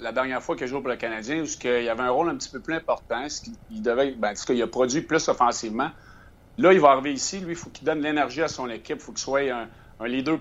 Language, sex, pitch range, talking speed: French, male, 115-150 Hz, 270 wpm